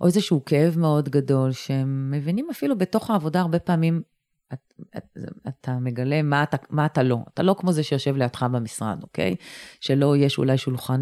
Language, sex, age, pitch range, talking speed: Hebrew, female, 30-49, 130-165 Hz, 180 wpm